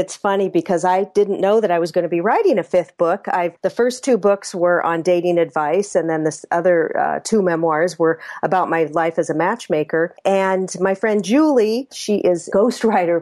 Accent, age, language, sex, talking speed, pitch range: American, 40-59, English, female, 210 wpm, 160-195 Hz